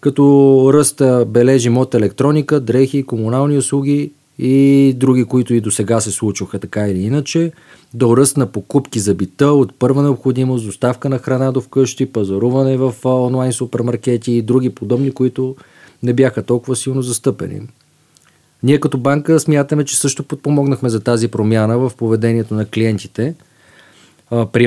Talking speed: 150 wpm